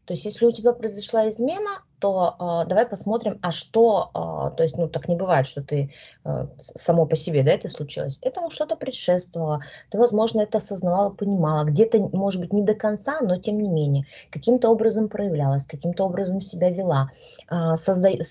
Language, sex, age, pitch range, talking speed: Russian, female, 20-39, 155-200 Hz, 185 wpm